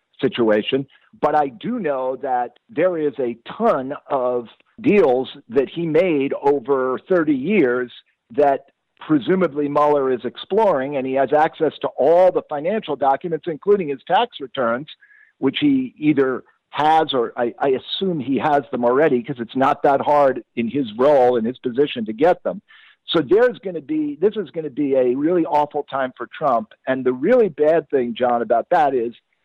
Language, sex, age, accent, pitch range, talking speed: English, male, 50-69, American, 130-155 Hz, 175 wpm